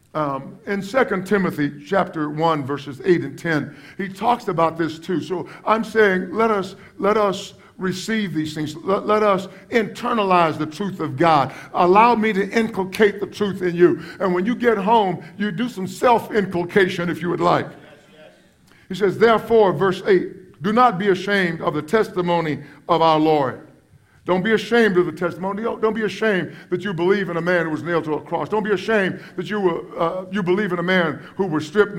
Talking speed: 195 wpm